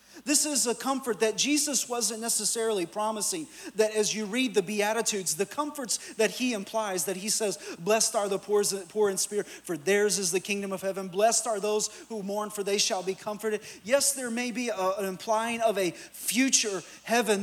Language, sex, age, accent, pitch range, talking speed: English, male, 40-59, American, 190-230 Hz, 195 wpm